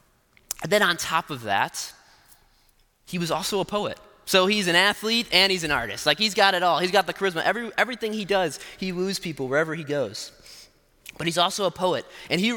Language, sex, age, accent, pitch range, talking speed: English, male, 20-39, American, 135-195 Hz, 215 wpm